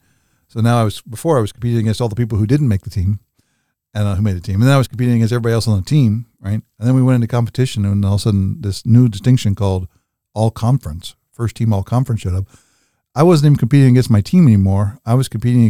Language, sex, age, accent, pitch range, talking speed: English, male, 50-69, American, 105-125 Hz, 260 wpm